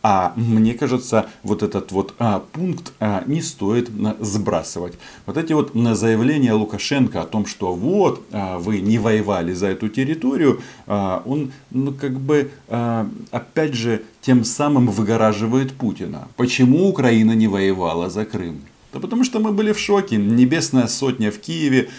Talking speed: 140 wpm